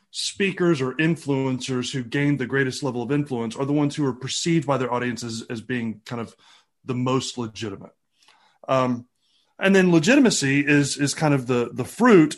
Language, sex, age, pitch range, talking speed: English, male, 30-49, 130-170 Hz, 180 wpm